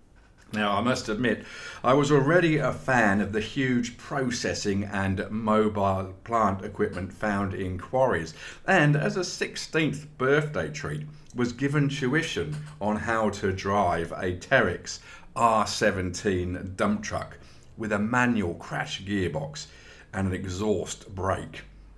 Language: English